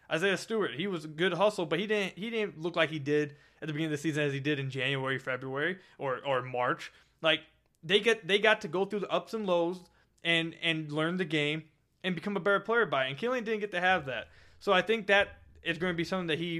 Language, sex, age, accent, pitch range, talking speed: English, male, 20-39, American, 140-180 Hz, 265 wpm